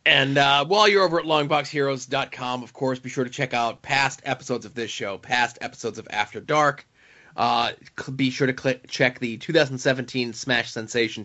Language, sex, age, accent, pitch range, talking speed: English, male, 30-49, American, 125-150 Hz, 180 wpm